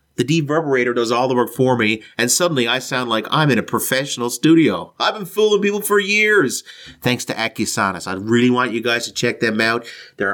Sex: male